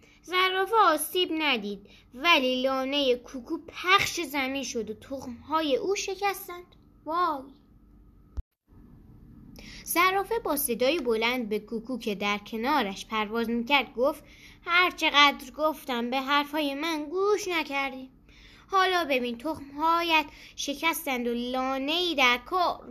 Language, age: Persian, 10-29